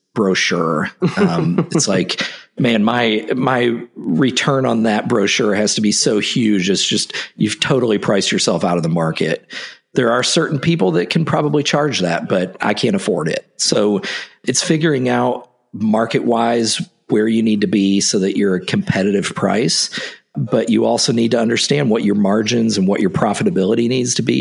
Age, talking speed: 50-69, 175 wpm